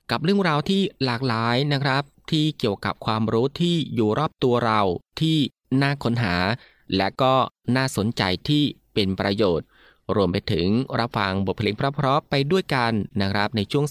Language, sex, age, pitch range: Thai, male, 20-39, 100-135 Hz